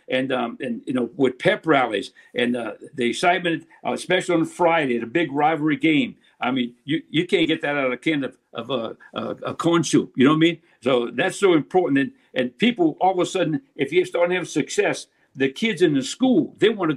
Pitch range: 145-210 Hz